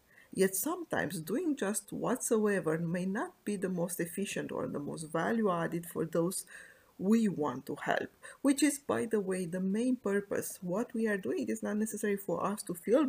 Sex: female